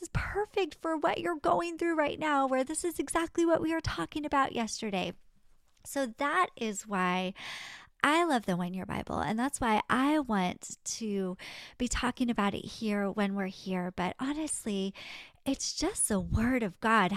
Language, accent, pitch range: English, American, 200-260 Hz